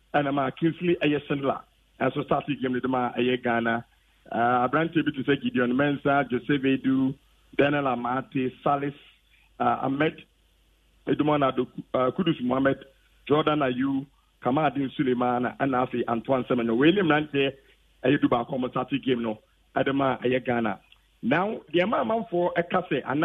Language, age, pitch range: English, 50-69, 130-160 Hz